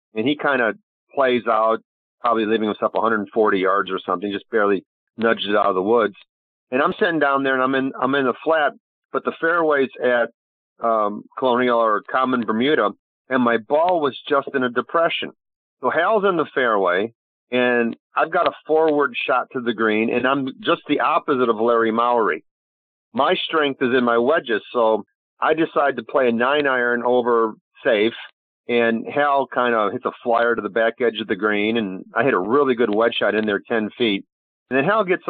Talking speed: 200 wpm